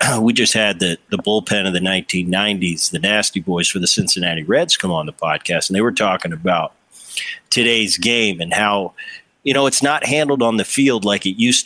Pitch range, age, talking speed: 105-135 Hz, 40-59, 205 wpm